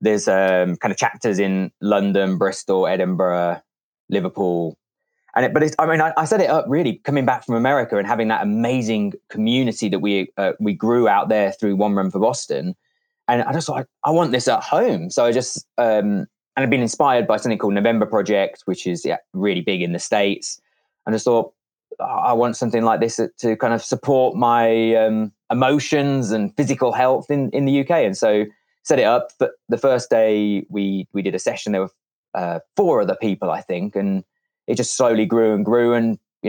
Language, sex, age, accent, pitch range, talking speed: English, male, 20-39, British, 100-125 Hz, 210 wpm